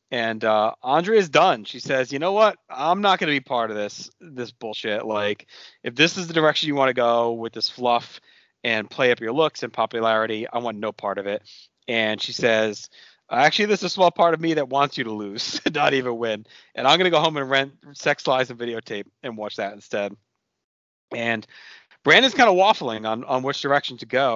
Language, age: English, 30-49